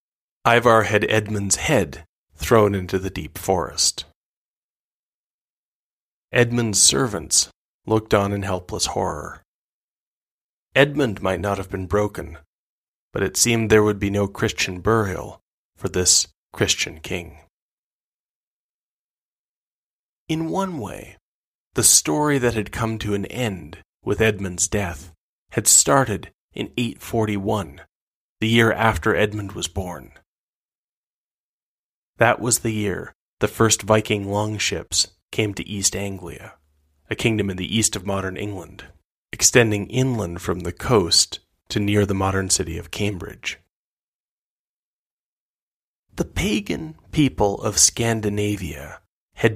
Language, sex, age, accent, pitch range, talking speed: English, male, 30-49, American, 90-110 Hz, 115 wpm